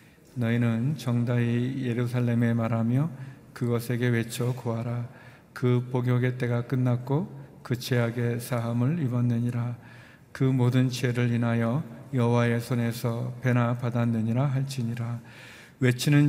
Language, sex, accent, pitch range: Korean, male, native, 120-130 Hz